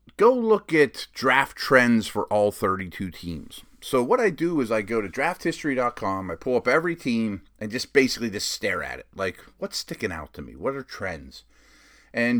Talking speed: 195 wpm